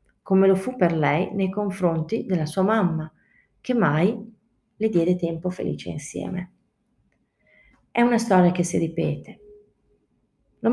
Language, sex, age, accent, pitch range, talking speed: Italian, female, 40-59, native, 155-205 Hz, 135 wpm